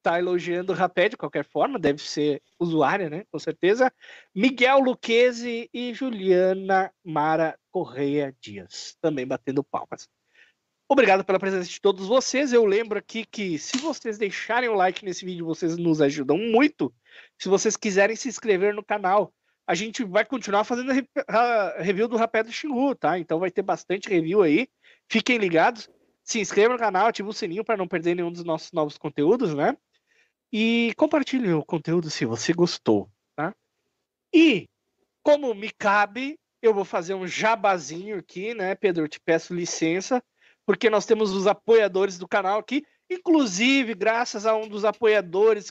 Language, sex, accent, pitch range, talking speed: Portuguese, male, Brazilian, 175-230 Hz, 165 wpm